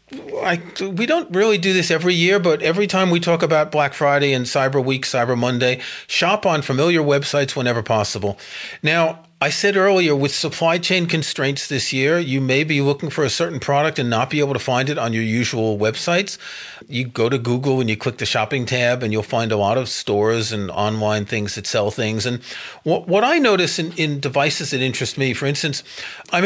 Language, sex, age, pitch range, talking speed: English, male, 40-59, 125-170 Hz, 210 wpm